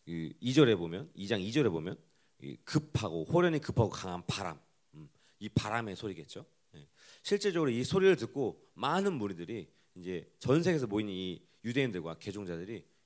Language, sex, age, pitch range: Korean, male, 40-59, 90-150 Hz